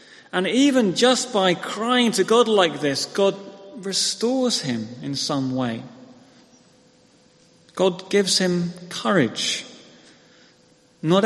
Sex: male